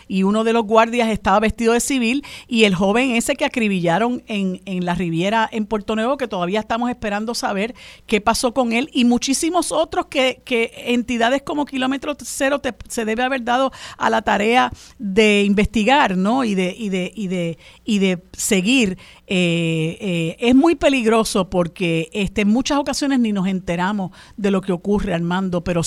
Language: Spanish